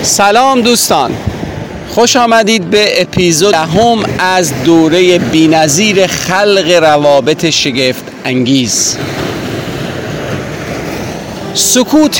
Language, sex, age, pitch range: Persian, male, 40-59, 140-185 Hz